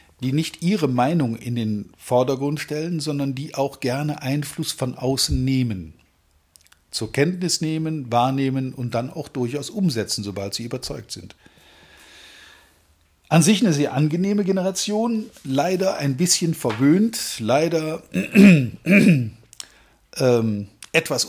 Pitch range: 120-160 Hz